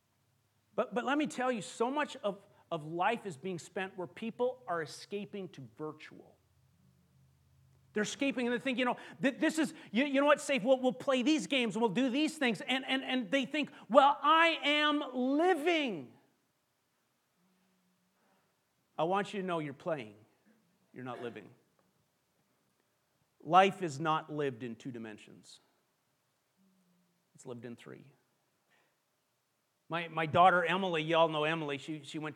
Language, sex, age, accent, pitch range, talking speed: English, male, 40-59, American, 145-195 Hz, 160 wpm